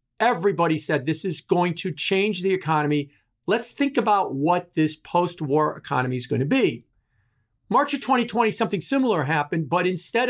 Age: 50-69